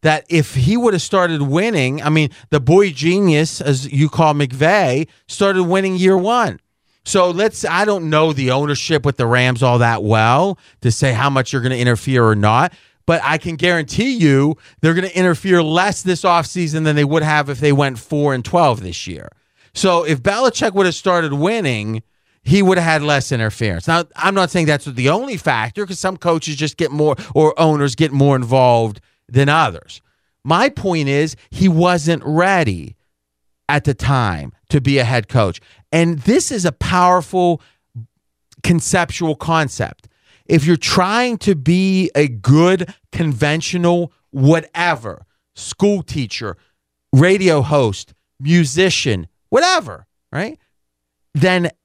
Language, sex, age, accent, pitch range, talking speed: English, male, 30-49, American, 130-175 Hz, 160 wpm